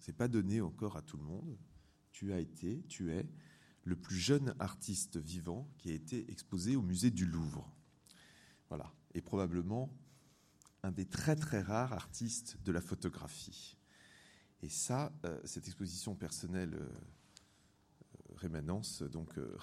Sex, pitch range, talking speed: male, 80-100 Hz, 145 wpm